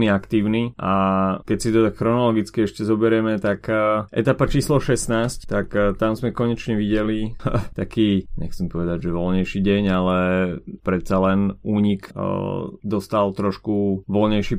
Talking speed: 130 wpm